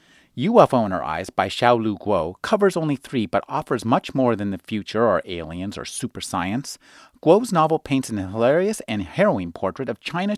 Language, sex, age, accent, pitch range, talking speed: English, male, 30-49, American, 105-160 Hz, 185 wpm